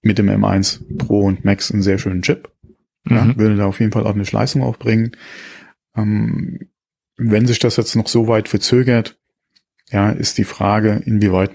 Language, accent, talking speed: German, German, 175 wpm